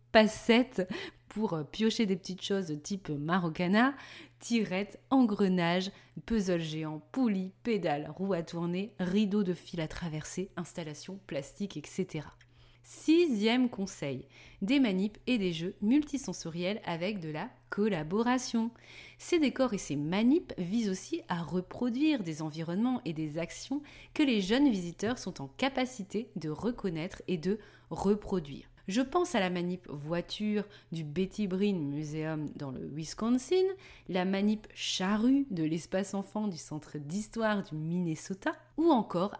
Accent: French